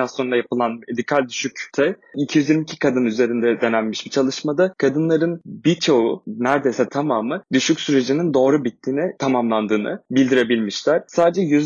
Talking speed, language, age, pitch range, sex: 110 wpm, Turkish, 20-39, 120-150 Hz, male